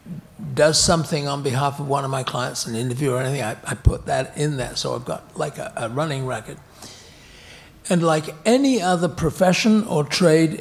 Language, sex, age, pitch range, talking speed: English, male, 60-79, 135-180 Hz, 190 wpm